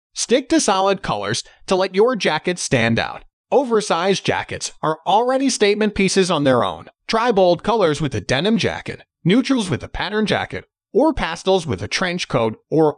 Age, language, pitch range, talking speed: 30-49, English, 160-225 Hz, 175 wpm